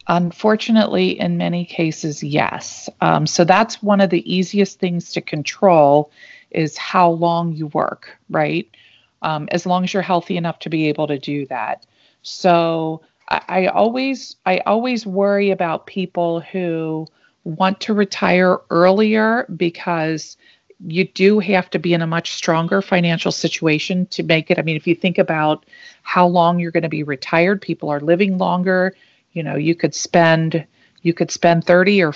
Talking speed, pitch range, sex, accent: 165 wpm, 160-190 Hz, female, American